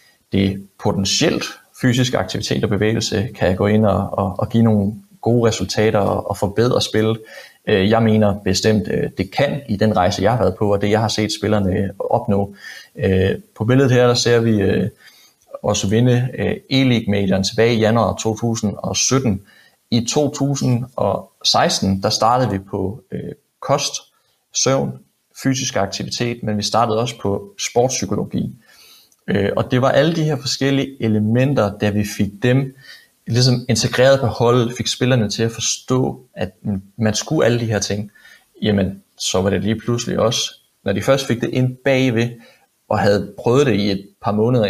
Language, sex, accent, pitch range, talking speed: Danish, male, native, 100-120 Hz, 160 wpm